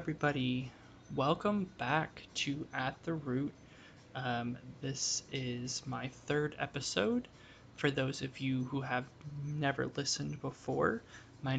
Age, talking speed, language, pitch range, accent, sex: 20-39, 120 wpm, English, 125-145 Hz, American, male